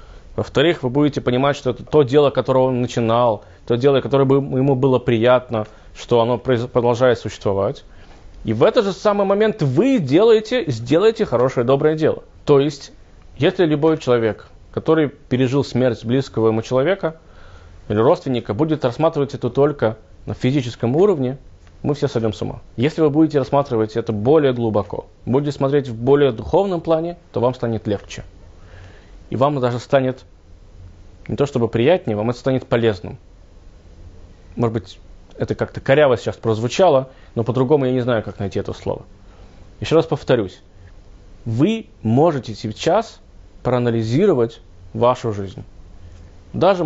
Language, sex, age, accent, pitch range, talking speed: Russian, male, 20-39, native, 100-140 Hz, 145 wpm